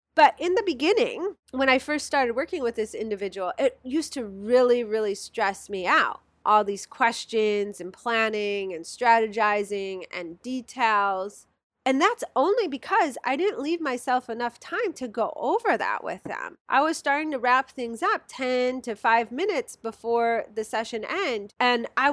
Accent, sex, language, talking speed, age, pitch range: American, female, English, 170 wpm, 30-49, 220-290 Hz